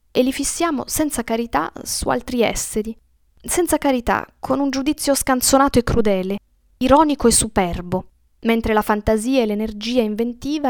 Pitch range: 190-250 Hz